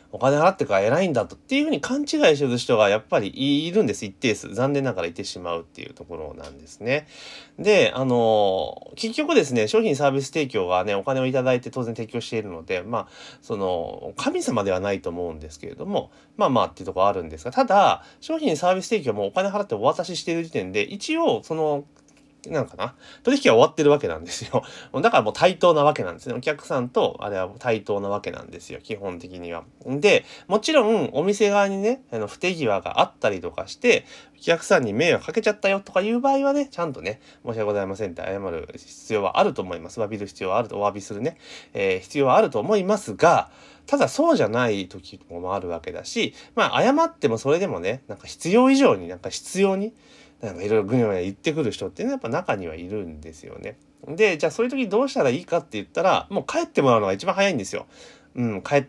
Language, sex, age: Japanese, male, 30-49